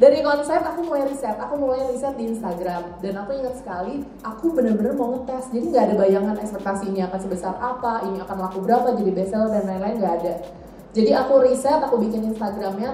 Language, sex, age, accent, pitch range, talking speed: Indonesian, female, 20-39, native, 195-245 Hz, 195 wpm